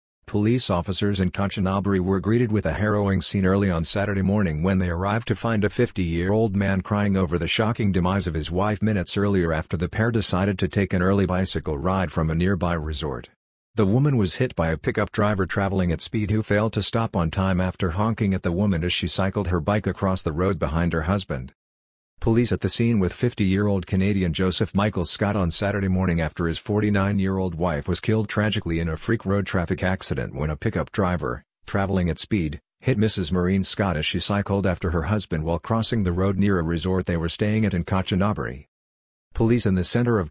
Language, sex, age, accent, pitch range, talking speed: English, male, 50-69, American, 90-105 Hz, 210 wpm